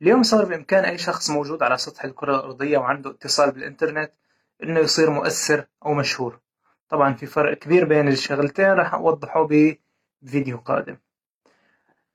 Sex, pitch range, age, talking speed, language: male, 140-170 Hz, 20-39, 140 wpm, Arabic